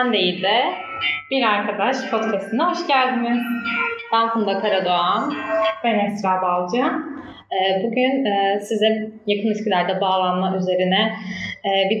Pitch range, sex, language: 195-230 Hz, female, Turkish